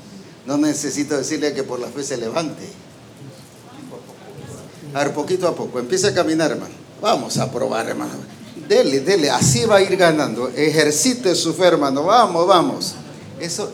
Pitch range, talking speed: 150-210 Hz, 155 wpm